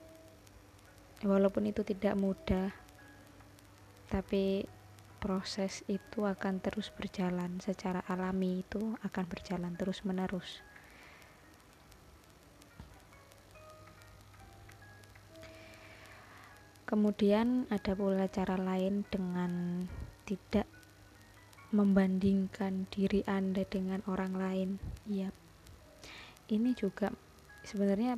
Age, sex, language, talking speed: 20-39, female, Indonesian, 70 wpm